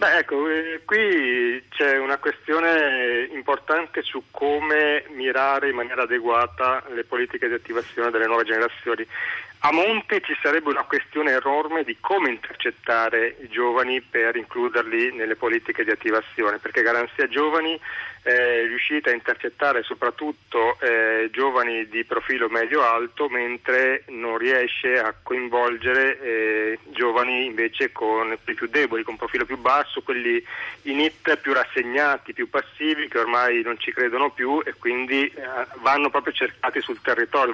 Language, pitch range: Italian, 115-150 Hz